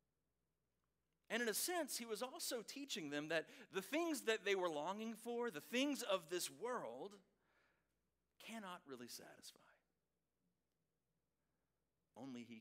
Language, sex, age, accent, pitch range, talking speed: English, male, 40-59, American, 150-220 Hz, 130 wpm